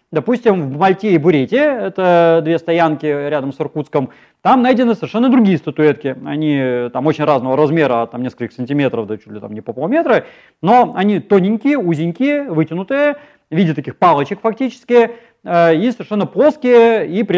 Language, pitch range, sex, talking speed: Russian, 140-205 Hz, male, 155 wpm